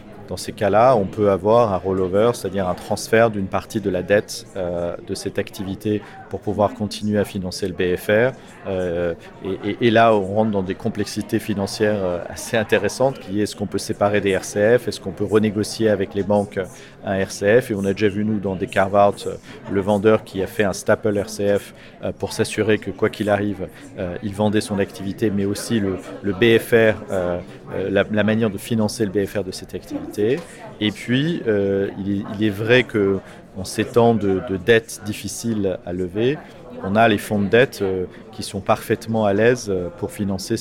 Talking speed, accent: 190 wpm, French